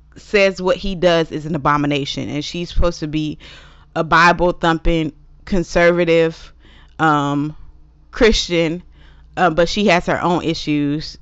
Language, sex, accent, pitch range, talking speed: English, female, American, 150-185 Hz, 130 wpm